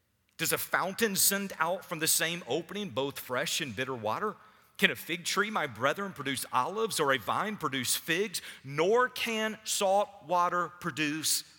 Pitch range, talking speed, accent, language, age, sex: 105-165 Hz, 165 wpm, American, English, 50-69, male